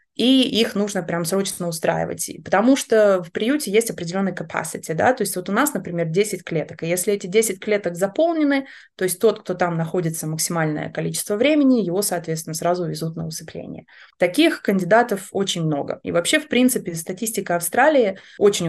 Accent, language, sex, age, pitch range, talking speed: native, Russian, female, 20-39, 170-215 Hz, 175 wpm